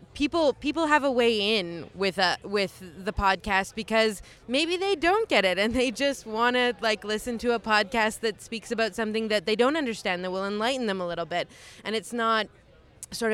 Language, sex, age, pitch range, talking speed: English, female, 20-39, 185-245 Hz, 205 wpm